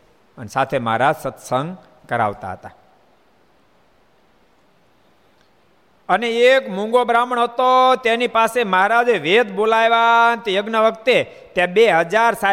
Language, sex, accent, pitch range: Gujarati, male, native, 150-210 Hz